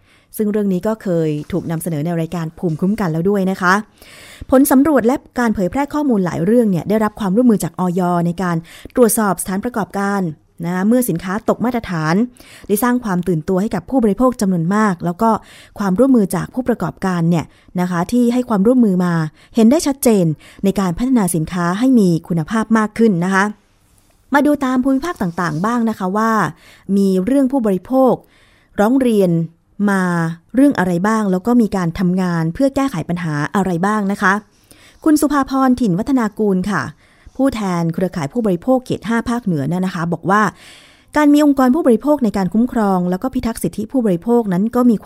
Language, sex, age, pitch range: Thai, female, 20-39, 180-240 Hz